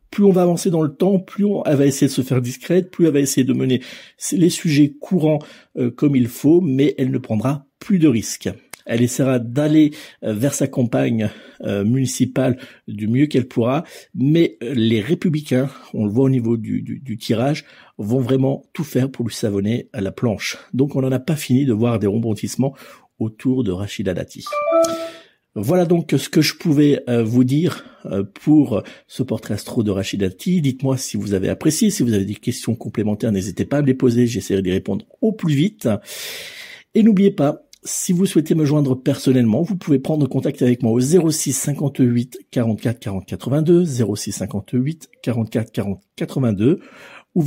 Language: French